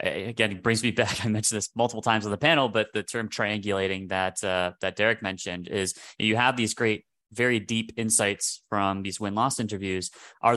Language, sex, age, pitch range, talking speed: English, male, 20-39, 95-115 Hz, 215 wpm